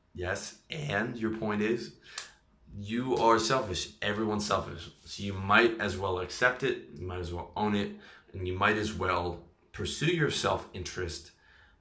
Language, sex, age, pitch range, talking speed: English, male, 30-49, 90-115 Hz, 160 wpm